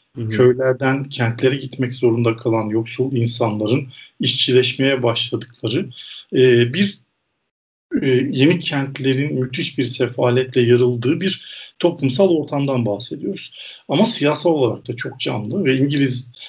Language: Turkish